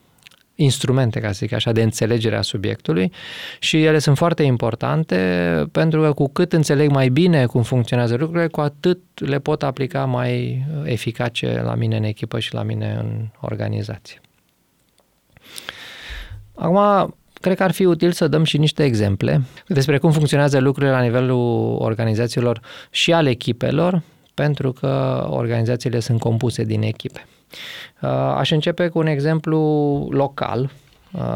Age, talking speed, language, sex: 20-39, 140 wpm, Romanian, male